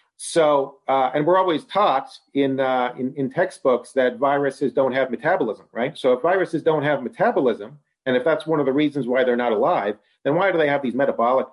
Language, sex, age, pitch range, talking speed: English, male, 40-59, 125-155 Hz, 210 wpm